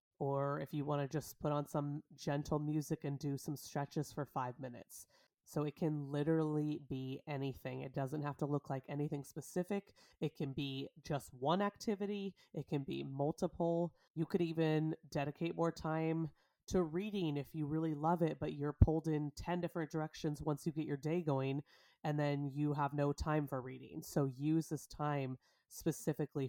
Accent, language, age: American, English, 30-49